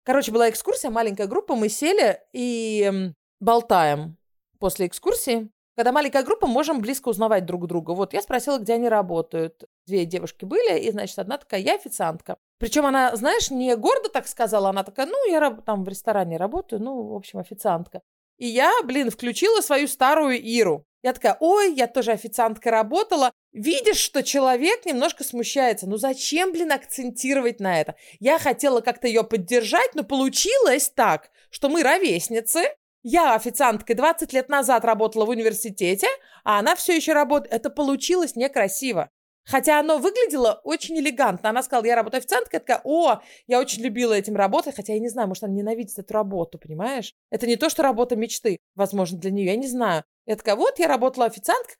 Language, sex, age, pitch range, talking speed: Russian, female, 30-49, 215-290 Hz, 175 wpm